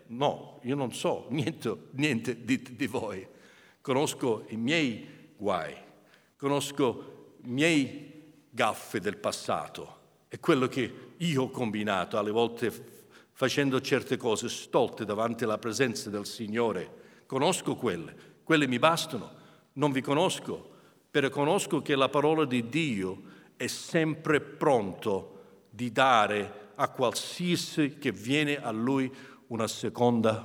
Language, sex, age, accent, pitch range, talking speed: Italian, male, 60-79, native, 110-140 Hz, 130 wpm